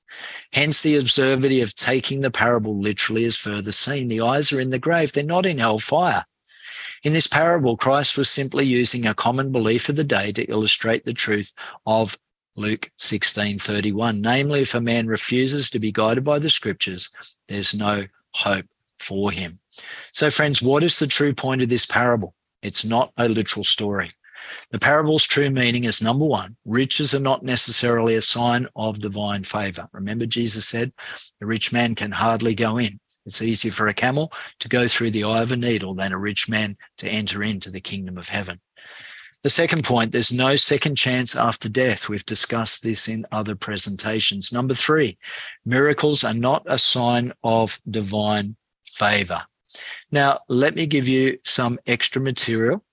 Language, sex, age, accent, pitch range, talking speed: English, male, 40-59, Australian, 105-135 Hz, 180 wpm